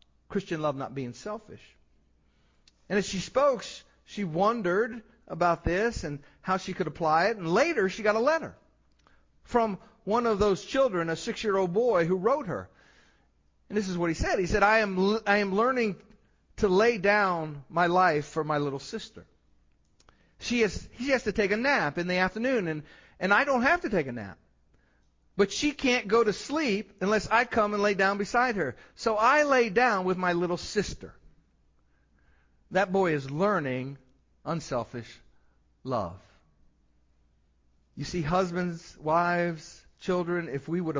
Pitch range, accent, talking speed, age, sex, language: 130-205 Hz, American, 165 wpm, 50-69, male, English